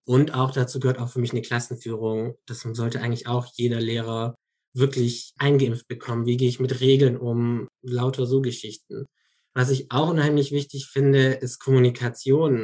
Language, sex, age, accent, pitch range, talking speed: German, male, 20-39, German, 120-140 Hz, 165 wpm